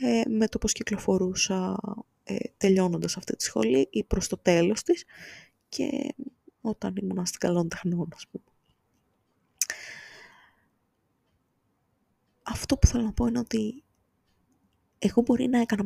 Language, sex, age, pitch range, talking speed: Greek, female, 20-39, 185-250 Hz, 120 wpm